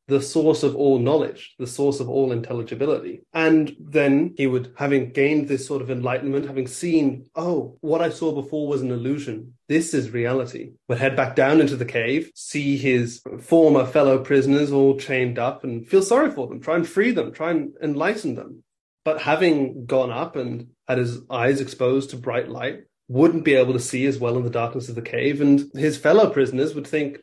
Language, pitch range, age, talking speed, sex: English, 125-155 Hz, 30-49, 205 wpm, male